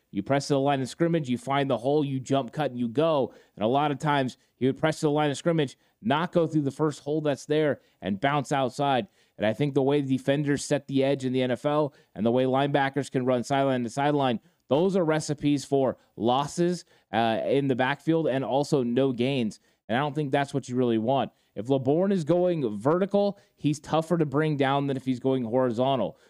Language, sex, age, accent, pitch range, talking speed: English, male, 30-49, American, 130-155 Hz, 230 wpm